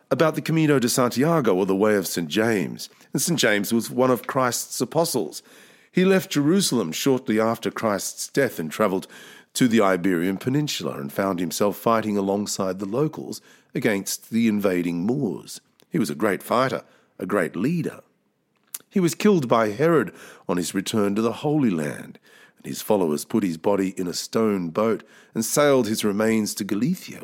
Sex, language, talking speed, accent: male, English, 175 wpm, Australian